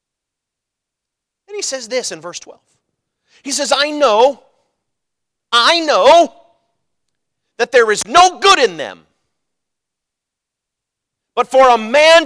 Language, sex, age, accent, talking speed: English, male, 40-59, American, 115 wpm